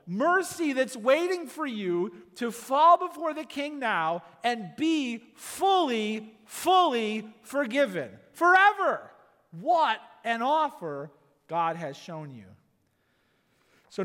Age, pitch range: 40-59, 175-240 Hz